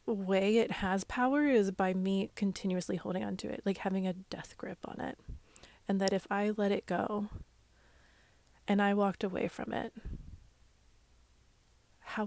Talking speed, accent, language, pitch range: 160 wpm, American, English, 195-240 Hz